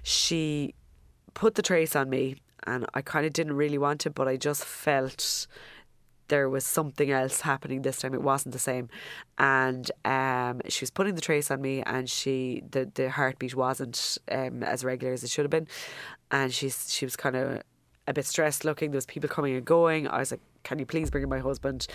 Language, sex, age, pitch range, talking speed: English, female, 20-39, 130-150 Hz, 215 wpm